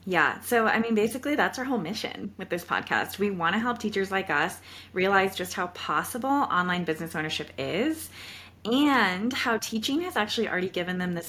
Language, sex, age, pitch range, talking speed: English, female, 20-39, 180-230 Hz, 190 wpm